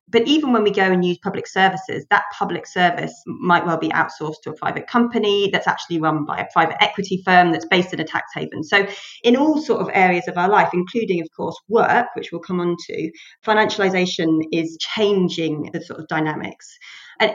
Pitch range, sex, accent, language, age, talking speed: 165-200 Hz, female, British, English, 30-49, 210 wpm